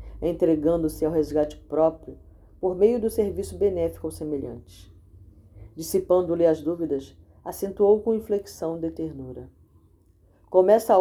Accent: Brazilian